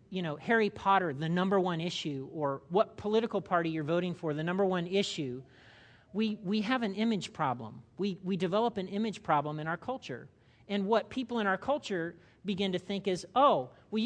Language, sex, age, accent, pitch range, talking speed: English, male, 40-59, American, 165-210 Hz, 195 wpm